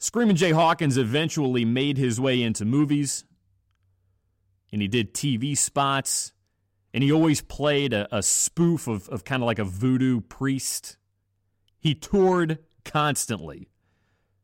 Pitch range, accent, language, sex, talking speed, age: 100-150 Hz, American, English, male, 130 wpm, 40-59